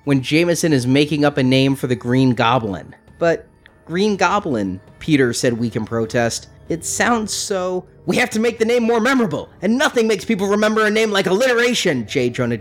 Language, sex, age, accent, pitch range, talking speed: English, male, 30-49, American, 130-185 Hz, 195 wpm